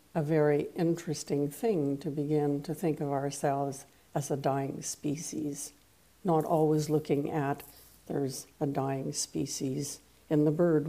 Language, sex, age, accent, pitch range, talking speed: English, female, 60-79, American, 145-160 Hz, 140 wpm